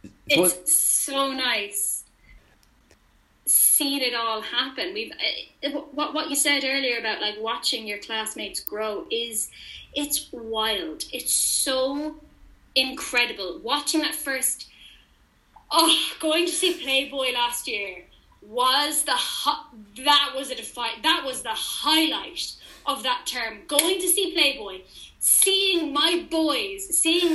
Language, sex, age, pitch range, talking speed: English, female, 10-29, 270-335 Hz, 125 wpm